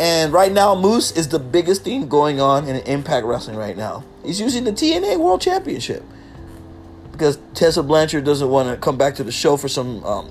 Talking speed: 205 wpm